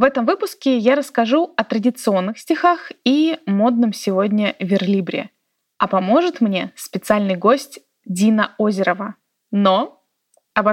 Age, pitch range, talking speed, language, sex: 20-39, 205-275 Hz, 115 wpm, Russian, female